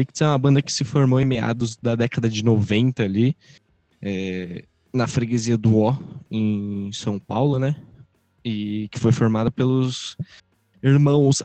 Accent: Brazilian